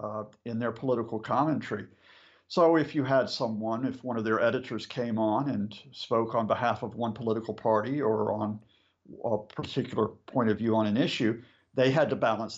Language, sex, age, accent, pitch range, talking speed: English, male, 50-69, American, 110-130 Hz, 185 wpm